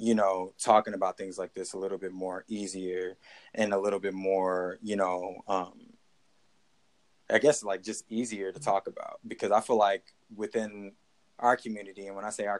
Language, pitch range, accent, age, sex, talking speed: English, 95-115 Hz, American, 20-39, male, 190 wpm